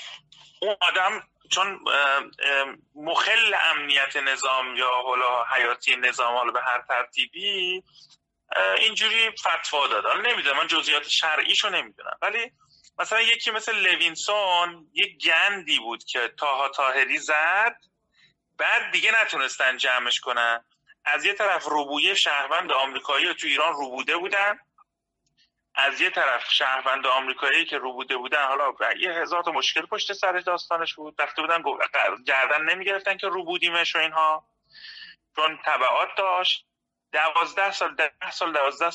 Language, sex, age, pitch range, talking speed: Persian, male, 30-49, 140-200 Hz, 135 wpm